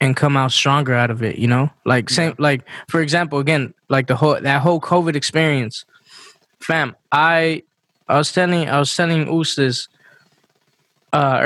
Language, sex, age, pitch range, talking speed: English, male, 20-39, 140-170 Hz, 170 wpm